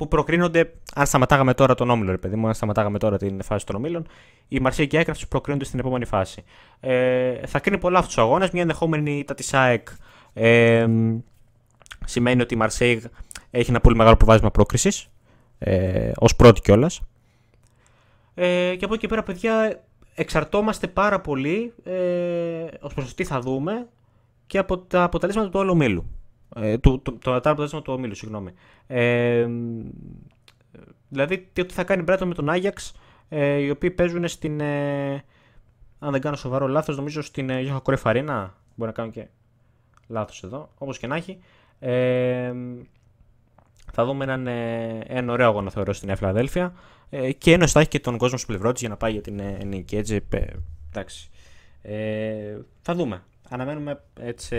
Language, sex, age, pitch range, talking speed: Greek, male, 20-39, 110-150 Hz, 155 wpm